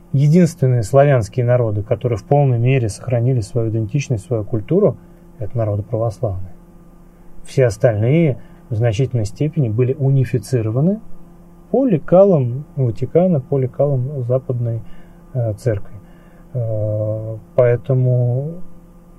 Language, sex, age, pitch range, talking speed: Russian, male, 30-49, 115-145 Hz, 95 wpm